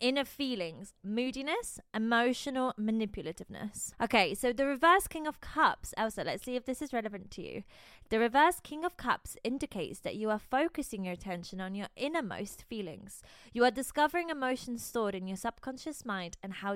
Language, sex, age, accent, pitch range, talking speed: English, female, 20-39, British, 195-265 Hz, 170 wpm